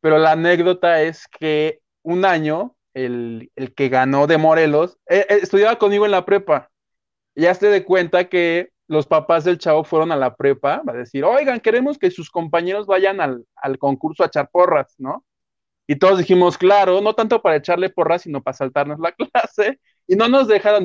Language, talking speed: Spanish, 195 wpm